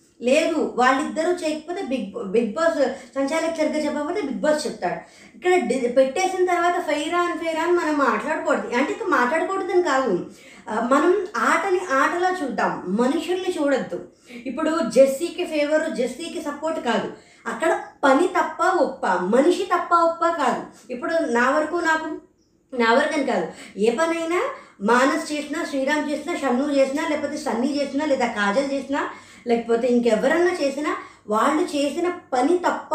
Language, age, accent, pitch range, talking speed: Telugu, 20-39, native, 260-330 Hz, 125 wpm